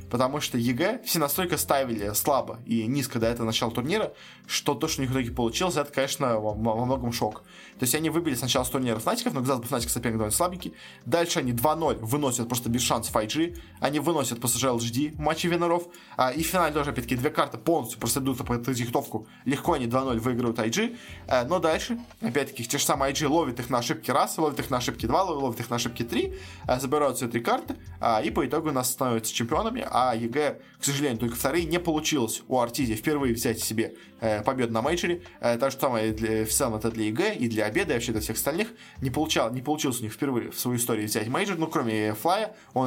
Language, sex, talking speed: Russian, male, 220 wpm